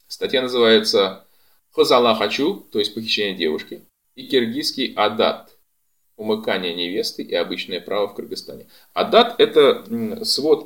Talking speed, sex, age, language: 115 wpm, male, 20-39, Russian